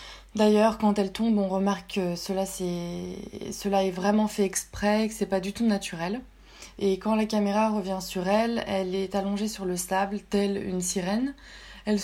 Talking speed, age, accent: 185 wpm, 20-39, French